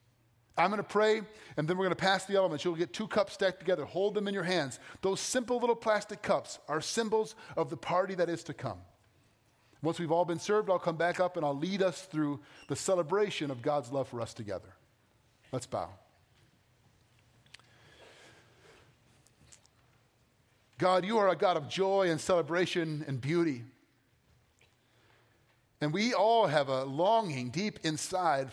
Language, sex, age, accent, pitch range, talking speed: English, male, 40-59, American, 120-185 Hz, 170 wpm